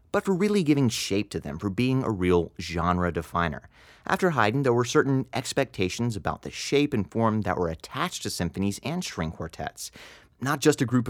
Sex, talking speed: male, 195 wpm